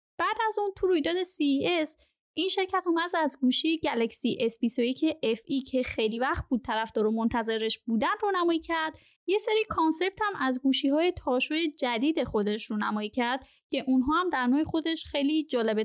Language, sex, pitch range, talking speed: Persian, female, 245-325 Hz, 175 wpm